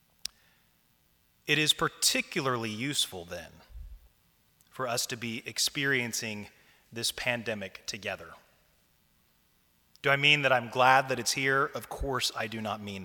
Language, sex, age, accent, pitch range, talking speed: English, male, 30-49, American, 110-135 Hz, 130 wpm